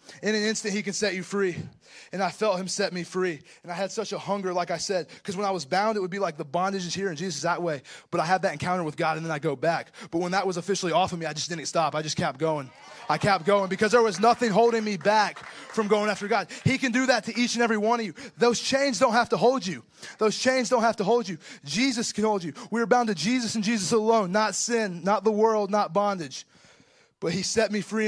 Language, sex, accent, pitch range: English, male, American, 160-215 Hz